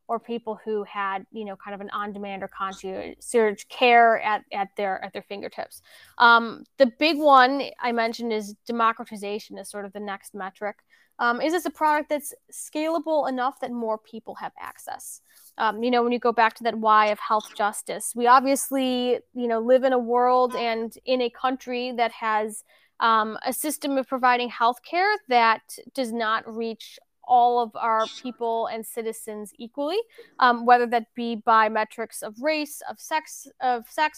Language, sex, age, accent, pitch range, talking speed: English, female, 20-39, American, 220-265 Hz, 180 wpm